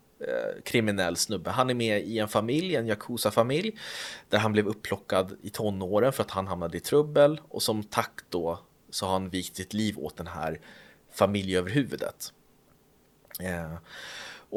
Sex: male